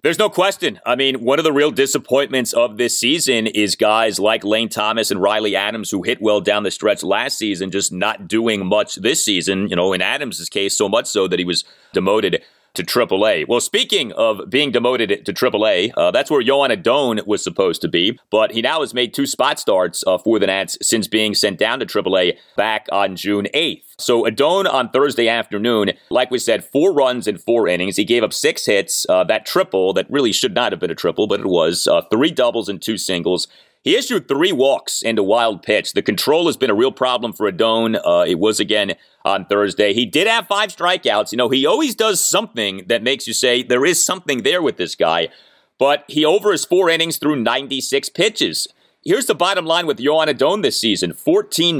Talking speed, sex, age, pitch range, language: 220 wpm, male, 30-49, 110-175 Hz, English